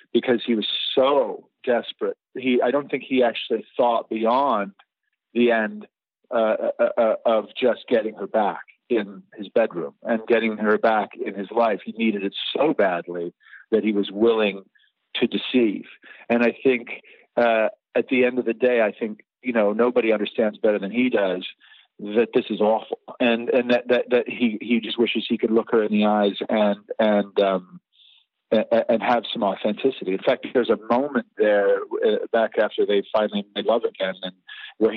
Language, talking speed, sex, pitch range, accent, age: English, 180 wpm, male, 100-120 Hz, American, 40-59